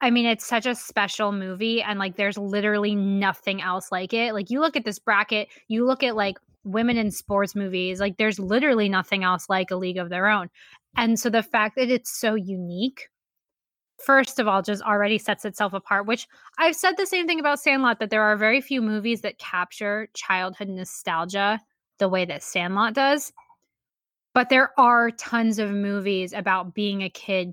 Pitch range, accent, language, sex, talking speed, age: 200-245 Hz, American, English, female, 195 wpm, 10-29